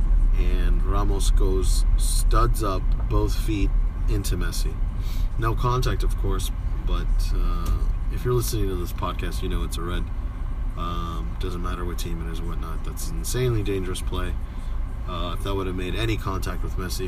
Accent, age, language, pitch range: American, 30-49, English, 85-100 Hz